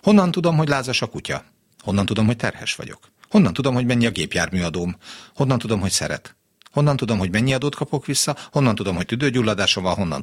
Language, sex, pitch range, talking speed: Hungarian, male, 105-145 Hz, 200 wpm